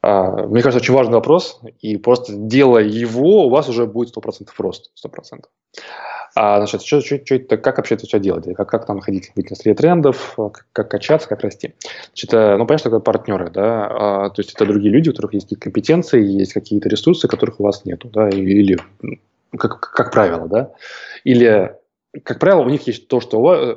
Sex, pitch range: male, 105-130 Hz